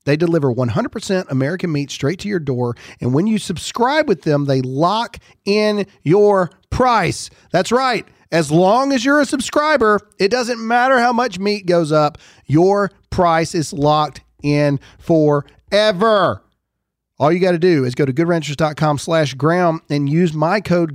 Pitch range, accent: 135-200 Hz, American